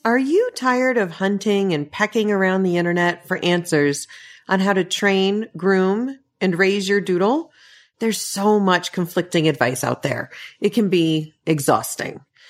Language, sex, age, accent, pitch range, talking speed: English, female, 40-59, American, 170-225 Hz, 155 wpm